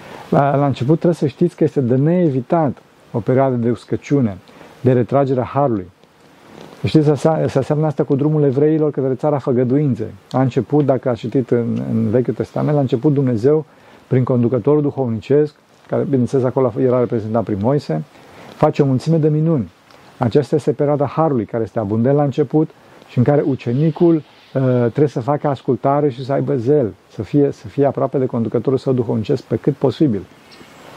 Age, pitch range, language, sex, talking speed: 50-69, 120-150 Hz, Romanian, male, 170 wpm